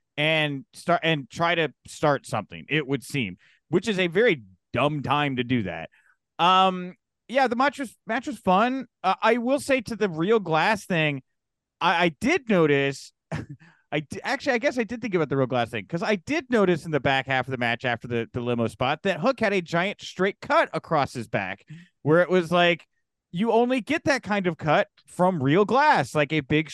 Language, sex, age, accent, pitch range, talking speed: English, male, 30-49, American, 130-180 Hz, 215 wpm